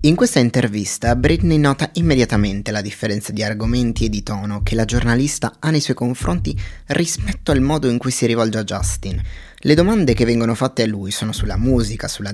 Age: 20-39